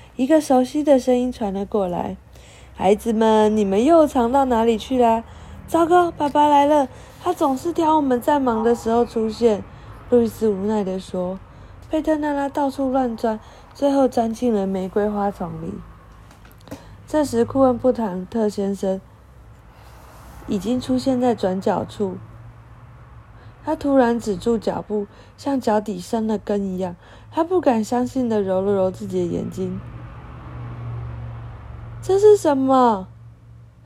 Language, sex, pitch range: Chinese, female, 195-275 Hz